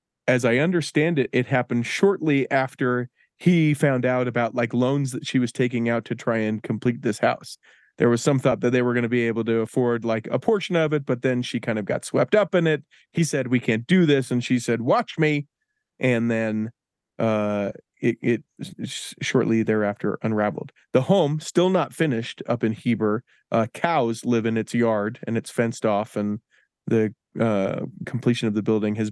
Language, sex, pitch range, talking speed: English, male, 115-150 Hz, 200 wpm